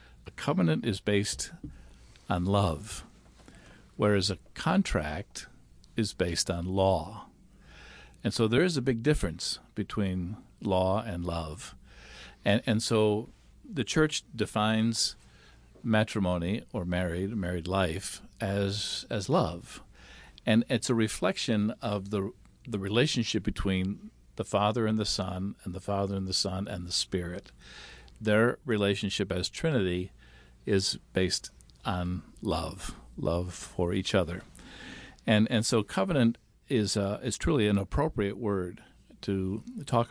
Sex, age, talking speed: male, 50-69, 130 wpm